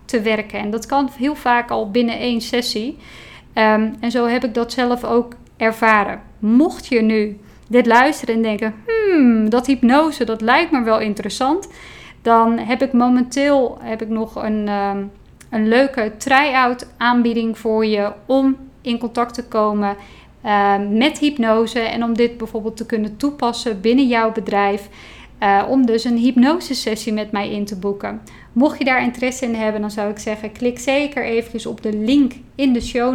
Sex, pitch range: female, 220-250 Hz